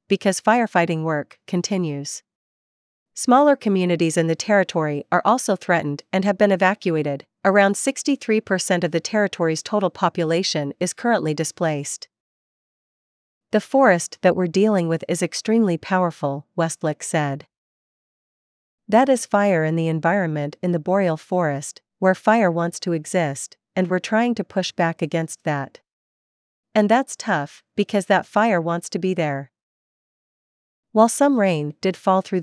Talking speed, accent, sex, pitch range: 140 wpm, American, female, 165-200 Hz